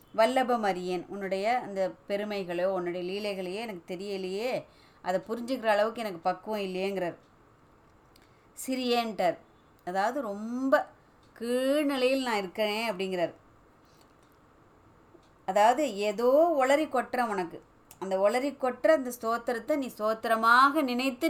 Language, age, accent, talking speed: Tamil, 20-39, native, 100 wpm